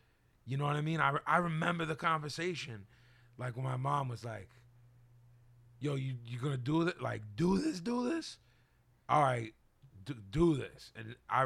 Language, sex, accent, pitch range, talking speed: English, male, American, 120-140 Hz, 185 wpm